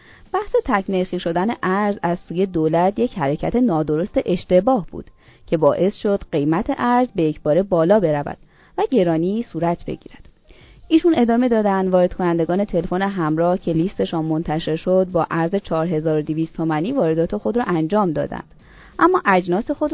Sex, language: female, Persian